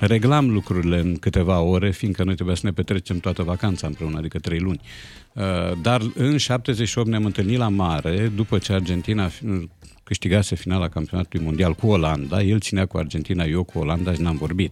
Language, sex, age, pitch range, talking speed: Romanian, male, 50-69, 90-115 Hz, 175 wpm